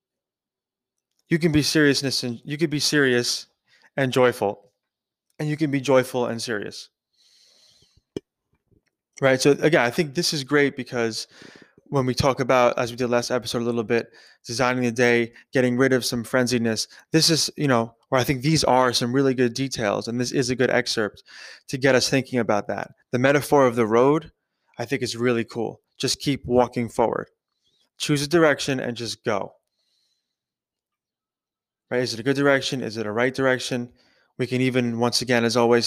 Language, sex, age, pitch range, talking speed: English, male, 20-39, 120-135 Hz, 180 wpm